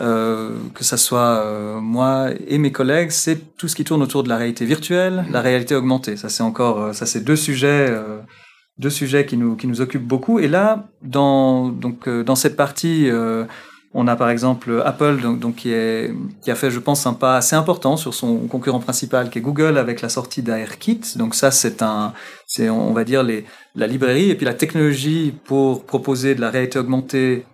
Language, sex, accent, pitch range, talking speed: French, male, French, 120-155 Hz, 210 wpm